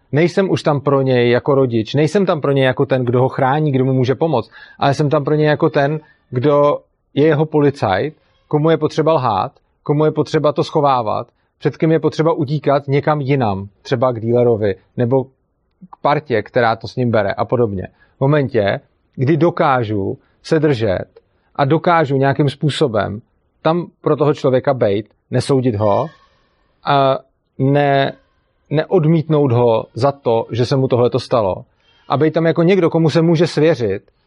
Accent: native